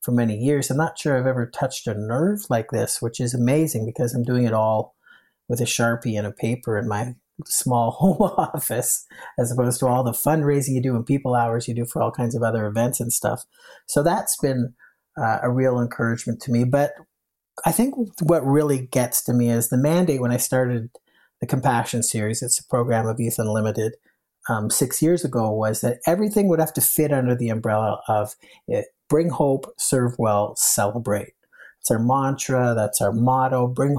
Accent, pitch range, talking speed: American, 115-140 Hz, 200 wpm